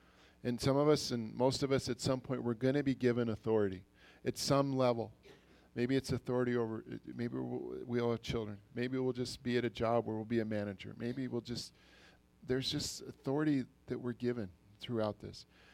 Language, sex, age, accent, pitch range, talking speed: English, male, 40-59, American, 110-135 Hz, 200 wpm